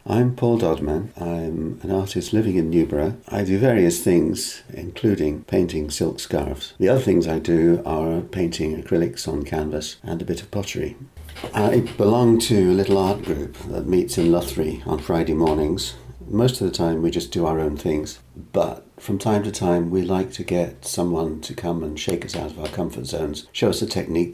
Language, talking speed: English, 195 wpm